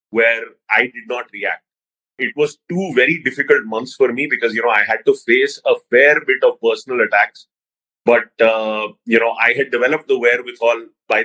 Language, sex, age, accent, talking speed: English, male, 30-49, Indian, 190 wpm